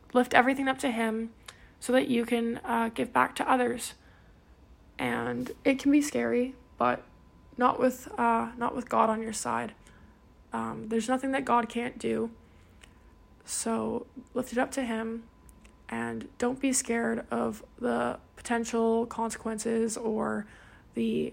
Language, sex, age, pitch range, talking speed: English, female, 20-39, 220-245 Hz, 145 wpm